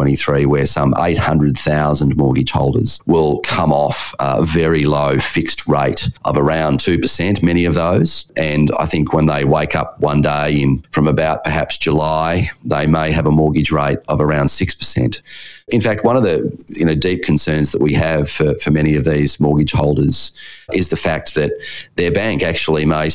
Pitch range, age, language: 70-80 Hz, 30-49, English